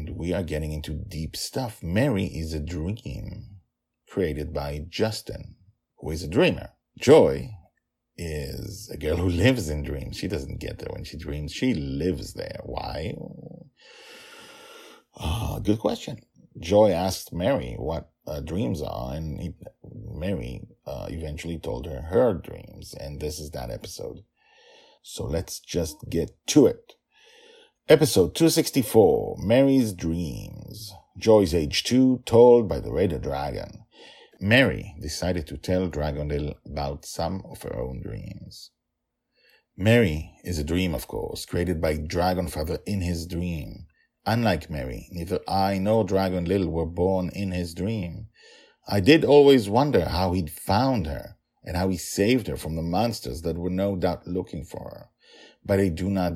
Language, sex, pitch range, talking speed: English, male, 80-110 Hz, 150 wpm